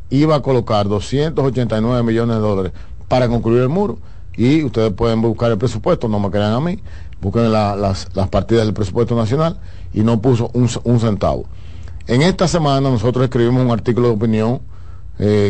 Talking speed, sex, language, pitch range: 180 wpm, male, Spanish, 95-125 Hz